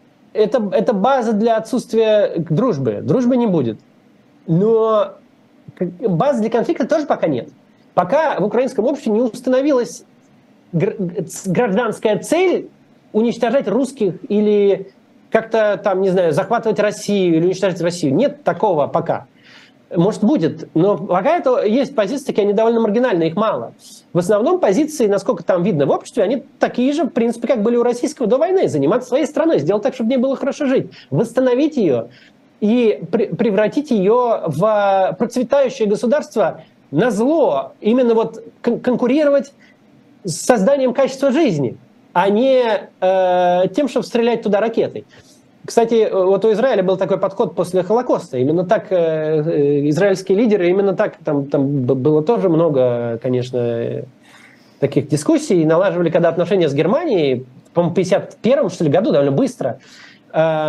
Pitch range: 180-250 Hz